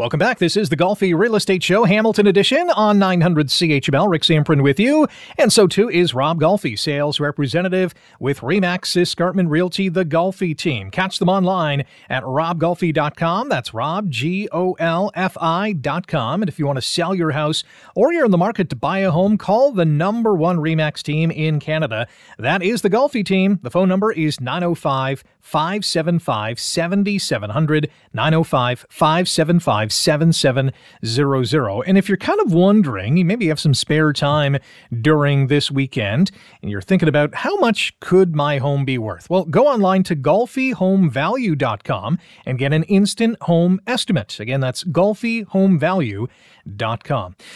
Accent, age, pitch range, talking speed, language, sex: American, 30-49, 145-190 Hz, 150 wpm, English, male